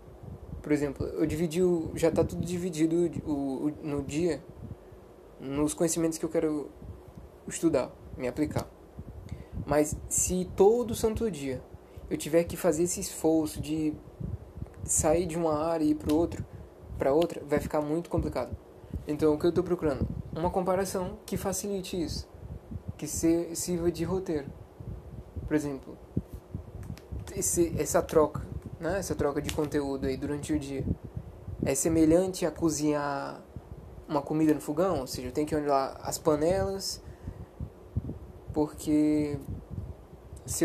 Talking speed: 135 wpm